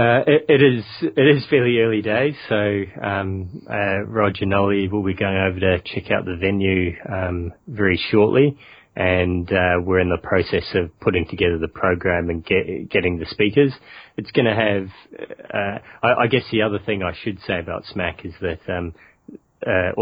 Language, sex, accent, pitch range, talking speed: English, male, Australian, 85-100 Hz, 185 wpm